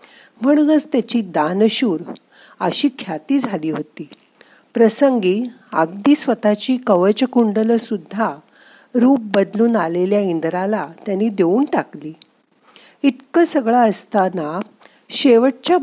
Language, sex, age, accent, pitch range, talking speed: Marathi, female, 50-69, native, 195-270 Hz, 85 wpm